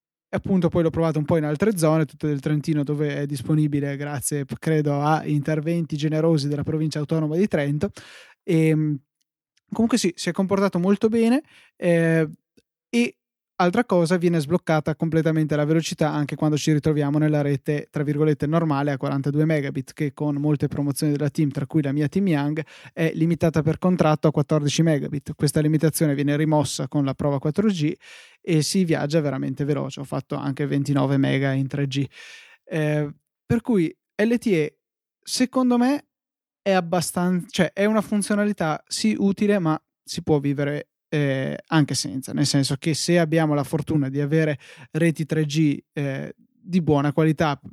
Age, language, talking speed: 20-39, Italian, 160 wpm